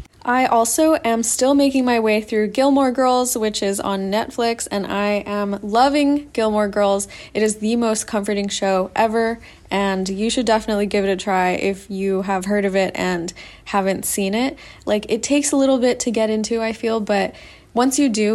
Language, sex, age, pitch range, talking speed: English, female, 20-39, 200-230 Hz, 195 wpm